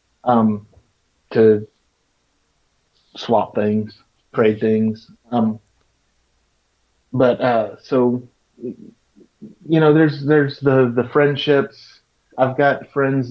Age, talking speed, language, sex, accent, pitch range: 30-49, 90 wpm, English, male, American, 110-130 Hz